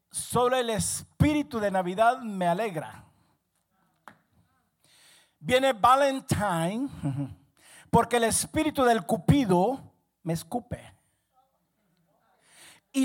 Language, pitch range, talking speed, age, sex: Spanish, 170-230 Hz, 80 wpm, 50-69, male